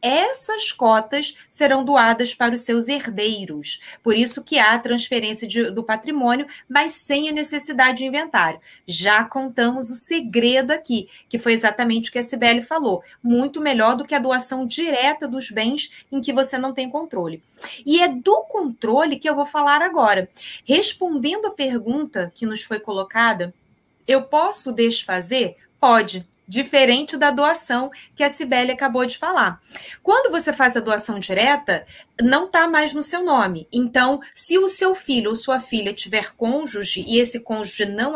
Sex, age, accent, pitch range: female, 20-39, Brazilian, 230-290 Hz